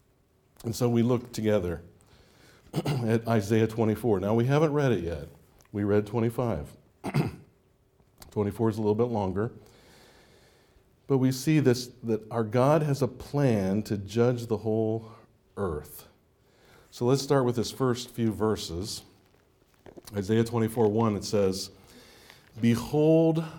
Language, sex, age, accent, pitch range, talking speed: English, male, 50-69, American, 100-125 Hz, 130 wpm